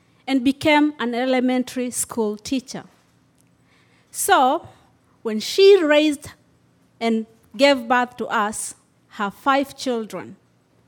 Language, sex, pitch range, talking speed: English, female, 220-290 Hz, 100 wpm